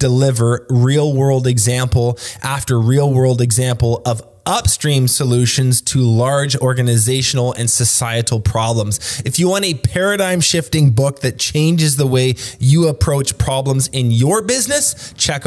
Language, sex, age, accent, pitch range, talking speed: English, male, 20-39, American, 115-145 Hz, 135 wpm